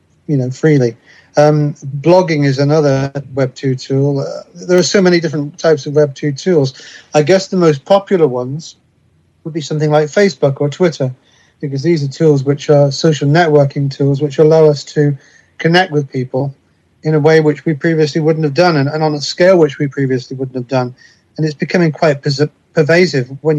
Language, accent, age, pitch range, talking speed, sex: English, British, 40-59, 140-160 Hz, 190 wpm, male